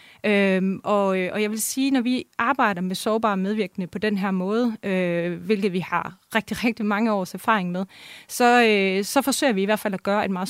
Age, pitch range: 30-49, 195-235 Hz